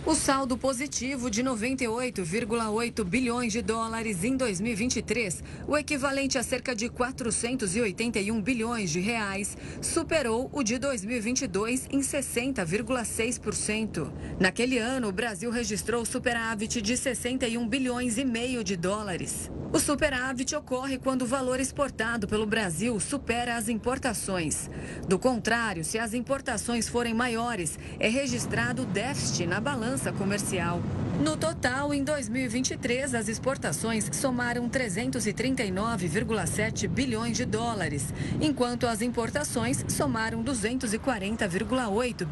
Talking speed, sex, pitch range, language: 110 wpm, female, 215-255 Hz, Portuguese